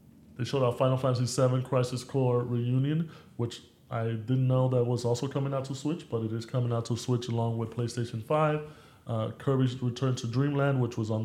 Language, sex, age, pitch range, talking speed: English, male, 20-39, 115-130 Hz, 210 wpm